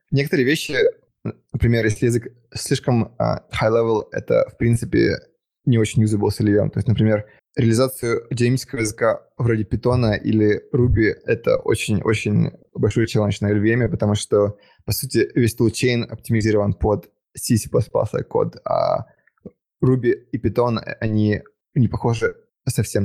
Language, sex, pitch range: Russian, male, 105-130 Hz